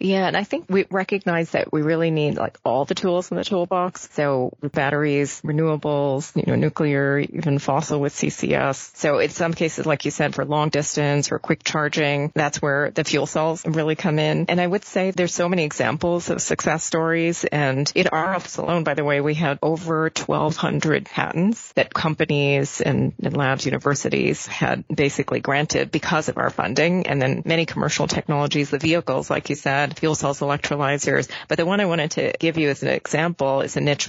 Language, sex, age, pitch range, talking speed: English, female, 30-49, 145-165 Hz, 195 wpm